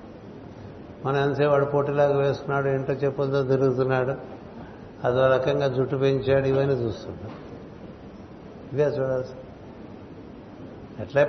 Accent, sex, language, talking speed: native, male, Telugu, 85 wpm